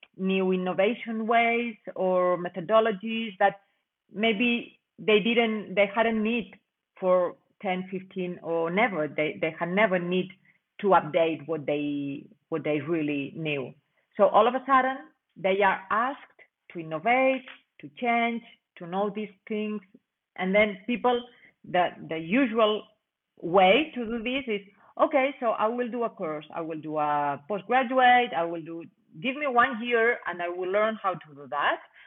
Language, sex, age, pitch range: English, female, 40-59, 165-225 Hz